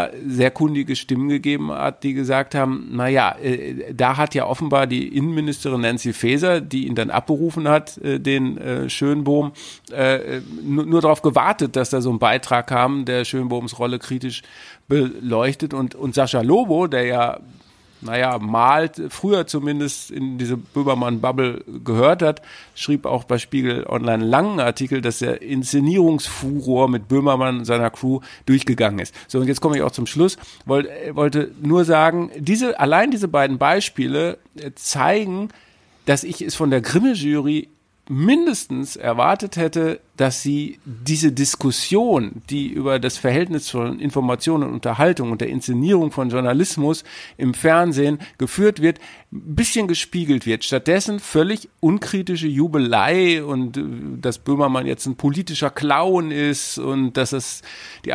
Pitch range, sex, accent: 130-155 Hz, male, German